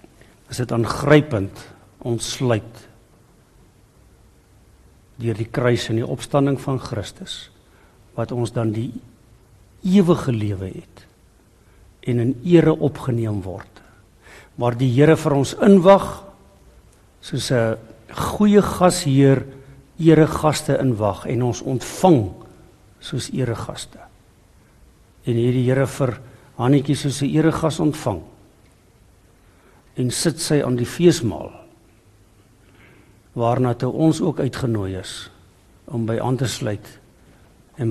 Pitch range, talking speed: 110-140 Hz, 110 wpm